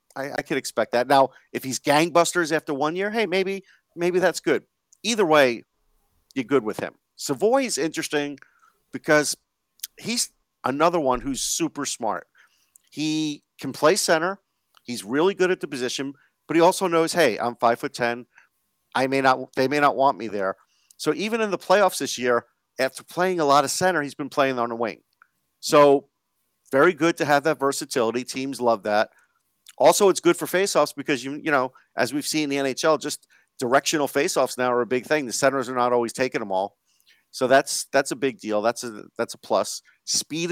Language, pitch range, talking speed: English, 125-160 Hz, 195 wpm